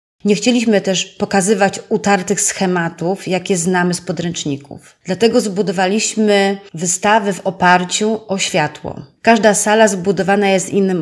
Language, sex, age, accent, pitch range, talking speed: Polish, female, 30-49, native, 170-205 Hz, 120 wpm